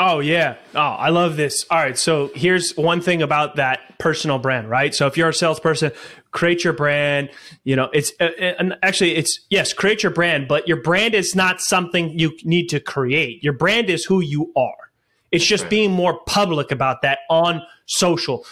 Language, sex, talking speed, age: English, male, 190 wpm, 20-39